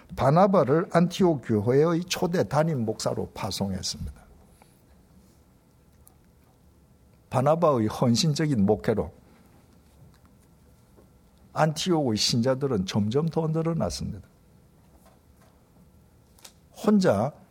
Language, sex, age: Korean, male, 60-79